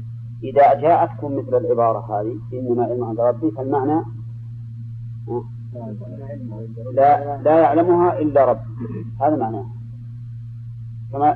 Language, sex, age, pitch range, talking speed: Arabic, male, 40-59, 120-135 Hz, 95 wpm